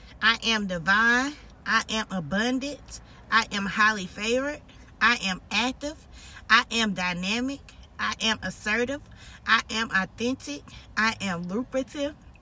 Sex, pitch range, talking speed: female, 215-265 Hz, 120 wpm